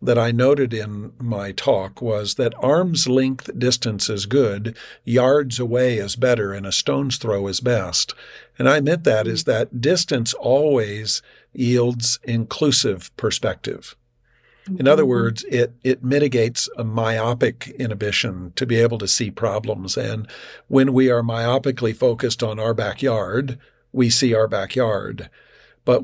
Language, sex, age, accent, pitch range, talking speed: English, male, 50-69, American, 110-130 Hz, 145 wpm